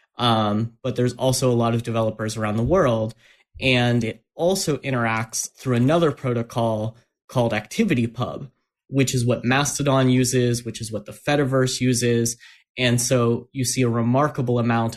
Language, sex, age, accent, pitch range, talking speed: English, male, 30-49, American, 115-130 Hz, 150 wpm